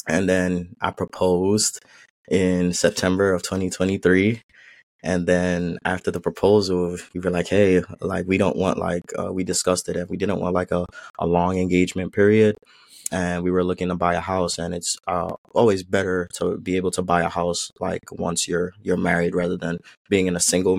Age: 20-39